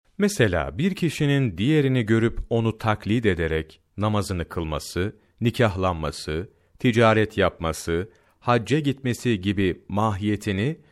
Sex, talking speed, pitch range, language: male, 95 wpm, 90-125 Hz, Turkish